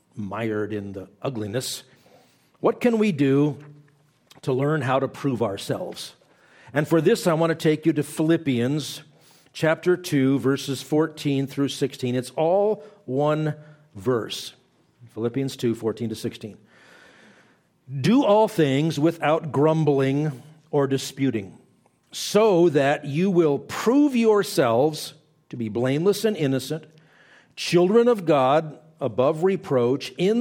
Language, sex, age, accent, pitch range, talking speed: English, male, 50-69, American, 120-155 Hz, 125 wpm